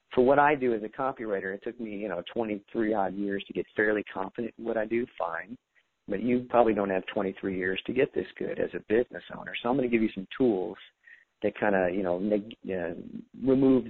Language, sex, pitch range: English, male, 100-120 Hz